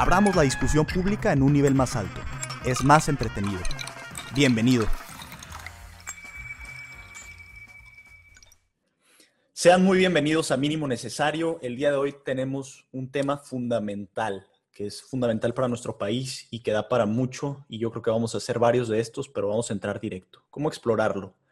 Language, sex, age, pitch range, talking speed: Spanish, male, 30-49, 110-130 Hz, 155 wpm